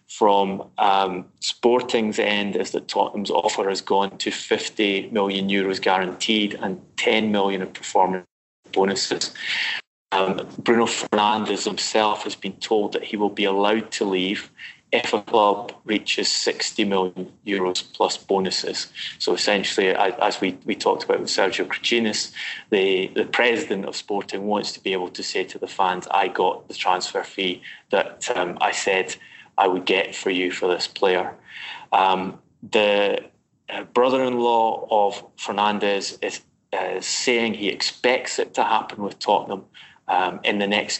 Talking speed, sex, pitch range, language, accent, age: 155 wpm, male, 95-115 Hz, English, British, 20-39